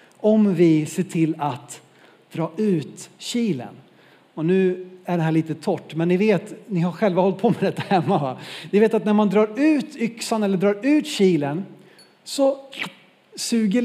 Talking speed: 180 wpm